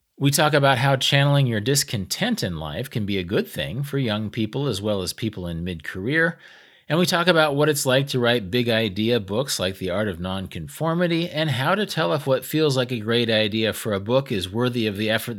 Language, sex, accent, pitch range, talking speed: English, male, American, 100-135 Hz, 225 wpm